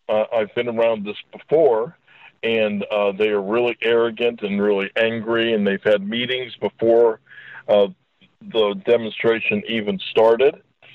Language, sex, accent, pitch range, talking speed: English, male, American, 110-135 Hz, 135 wpm